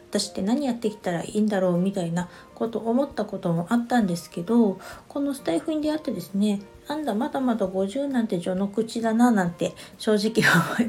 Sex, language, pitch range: female, Japanese, 190-225 Hz